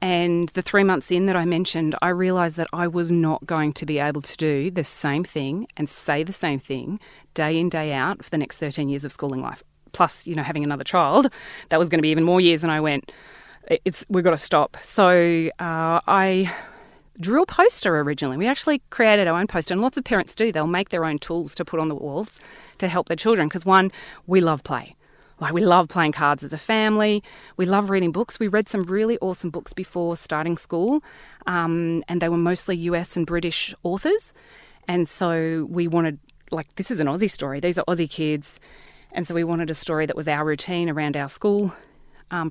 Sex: female